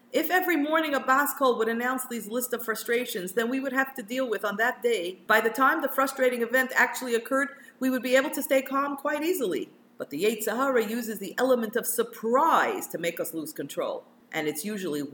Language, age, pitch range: English, 50-69, 180-260 Hz